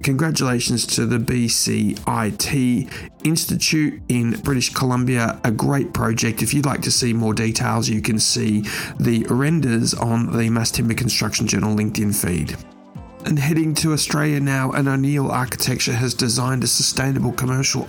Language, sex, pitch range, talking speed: English, male, 115-135 Hz, 150 wpm